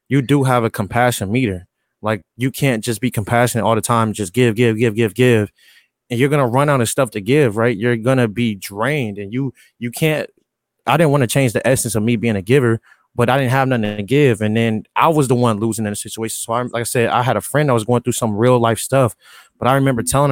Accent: American